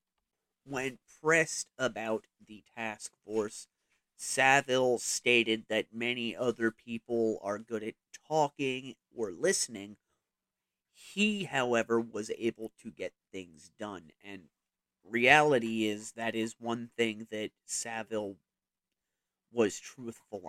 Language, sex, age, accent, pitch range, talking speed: English, male, 30-49, American, 105-125 Hz, 110 wpm